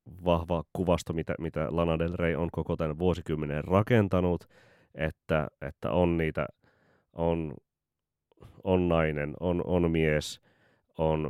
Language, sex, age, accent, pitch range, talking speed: Finnish, male, 30-49, native, 75-85 Hz, 120 wpm